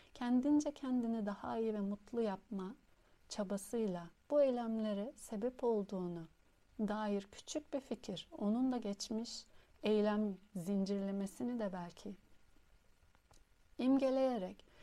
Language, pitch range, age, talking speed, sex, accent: Turkish, 200-250 Hz, 60-79, 95 wpm, female, native